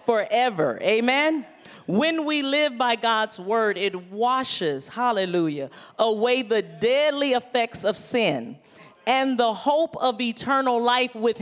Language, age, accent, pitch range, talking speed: English, 40-59, American, 190-250 Hz, 125 wpm